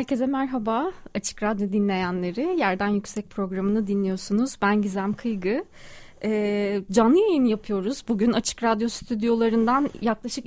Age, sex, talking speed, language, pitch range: 30-49, female, 120 wpm, Turkish, 195-250 Hz